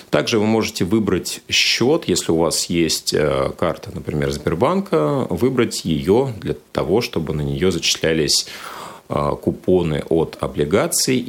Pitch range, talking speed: 80-110 Hz, 120 wpm